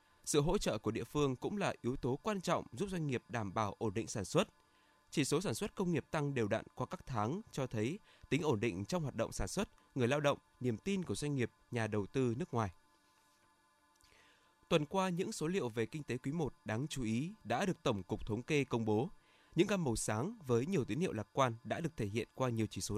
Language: Vietnamese